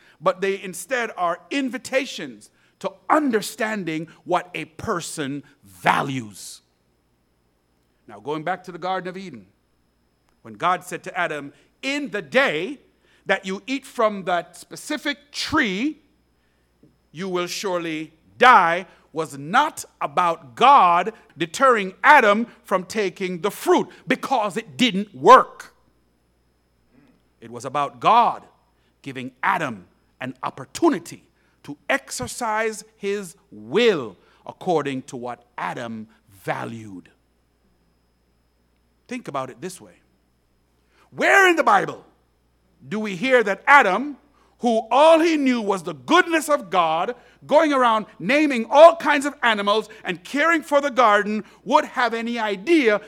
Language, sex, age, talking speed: English, male, 50-69, 120 wpm